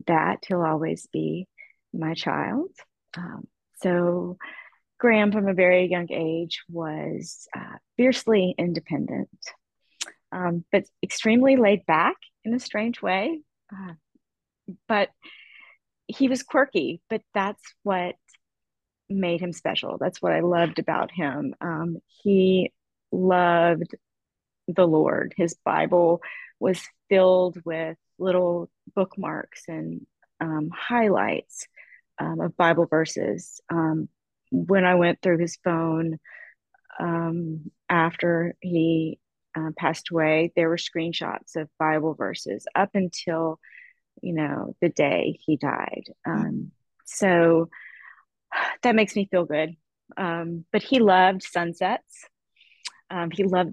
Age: 30-49